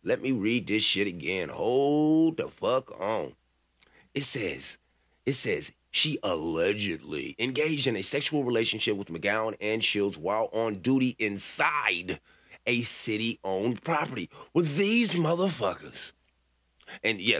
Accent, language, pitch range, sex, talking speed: American, English, 100-155 Hz, male, 130 wpm